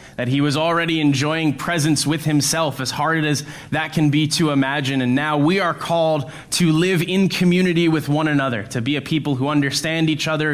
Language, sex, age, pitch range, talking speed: English, male, 20-39, 140-175 Hz, 205 wpm